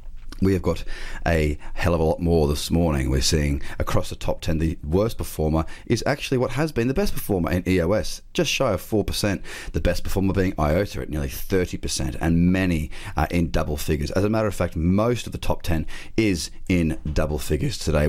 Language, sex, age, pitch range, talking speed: English, male, 30-49, 80-100 Hz, 210 wpm